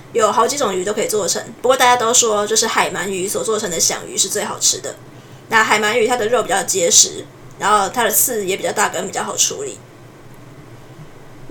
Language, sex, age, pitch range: Chinese, female, 20-39, 215-295 Hz